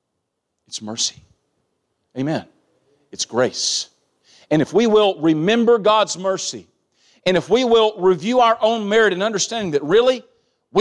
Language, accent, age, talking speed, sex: English, American, 40-59, 140 wpm, male